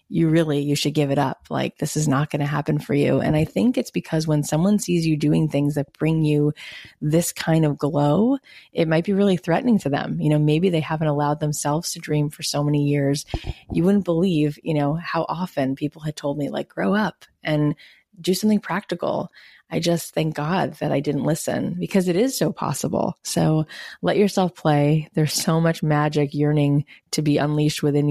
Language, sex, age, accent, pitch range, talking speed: English, female, 20-39, American, 145-165 Hz, 210 wpm